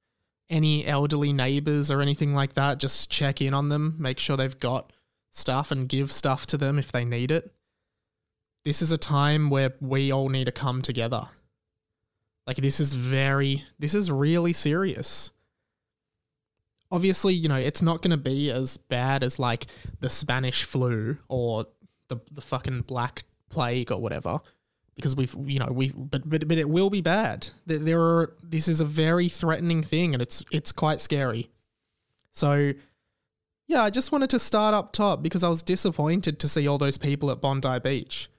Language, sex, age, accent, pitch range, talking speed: English, male, 20-39, Australian, 125-155 Hz, 180 wpm